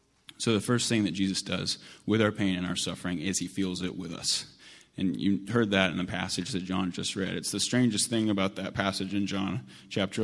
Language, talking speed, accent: English, 235 wpm, American